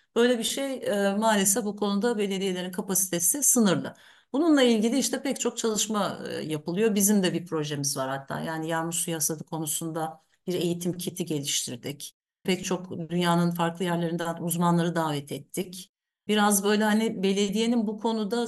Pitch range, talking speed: 170-215 Hz, 145 wpm